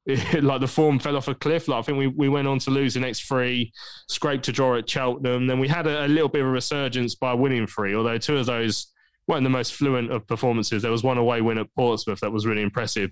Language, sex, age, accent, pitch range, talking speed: English, male, 20-39, British, 115-135 Hz, 270 wpm